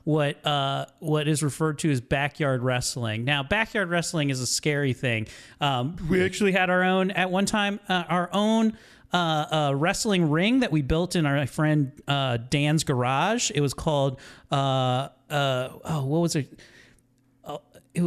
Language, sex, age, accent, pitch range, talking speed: English, male, 30-49, American, 135-180 Hz, 175 wpm